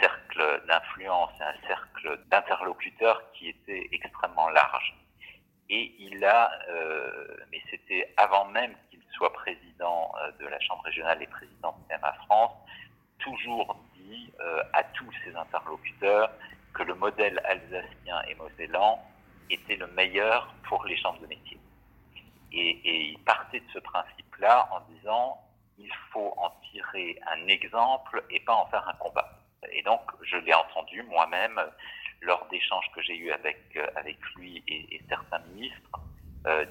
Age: 50-69